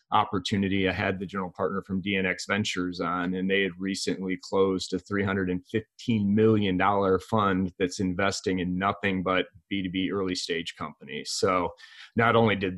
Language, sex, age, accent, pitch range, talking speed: English, male, 30-49, American, 95-105 Hz, 150 wpm